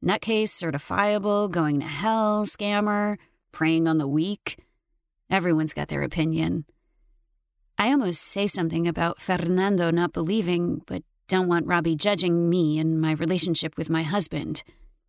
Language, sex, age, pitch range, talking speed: English, female, 30-49, 160-195 Hz, 135 wpm